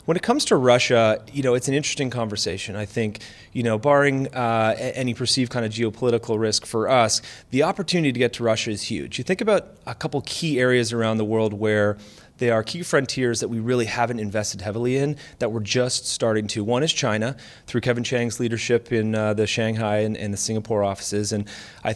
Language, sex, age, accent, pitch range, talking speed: English, male, 30-49, American, 105-125 Hz, 215 wpm